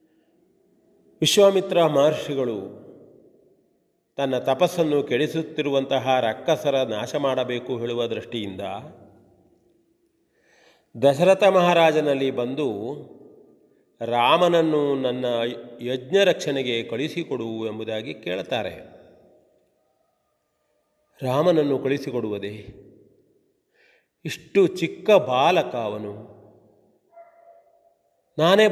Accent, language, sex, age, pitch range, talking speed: native, Kannada, male, 40-59, 120-160 Hz, 50 wpm